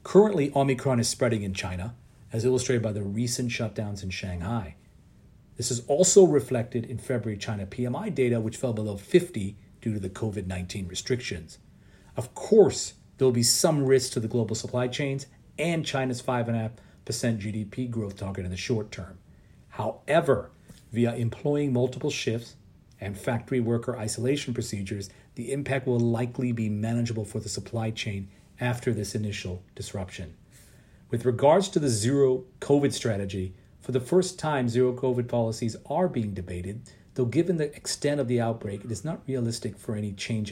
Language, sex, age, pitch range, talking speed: English, male, 40-59, 105-130 Hz, 160 wpm